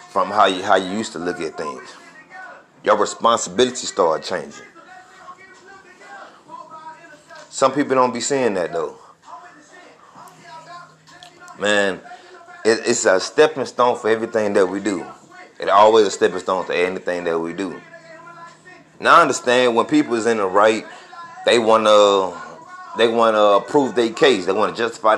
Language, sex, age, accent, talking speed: English, male, 30-49, American, 155 wpm